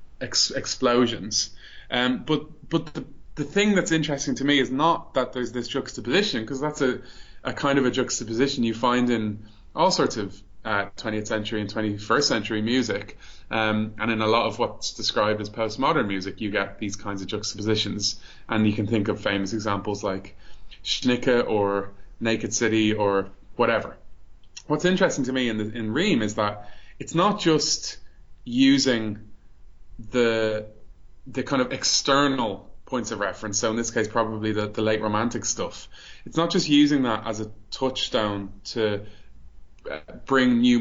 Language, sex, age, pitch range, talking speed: English, male, 20-39, 105-135 Hz, 165 wpm